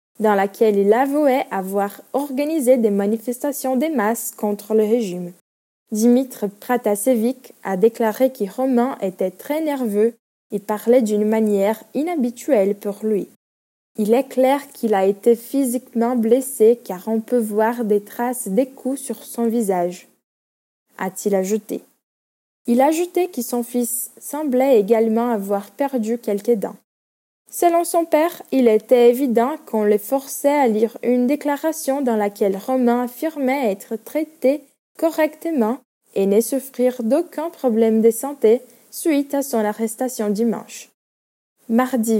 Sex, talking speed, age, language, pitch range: female, 135 wpm, 10-29, Portuguese, 215-265 Hz